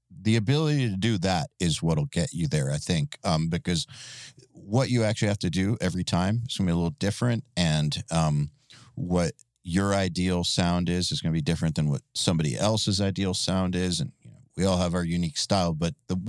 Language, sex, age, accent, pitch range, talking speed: English, male, 40-59, American, 90-120 Hz, 210 wpm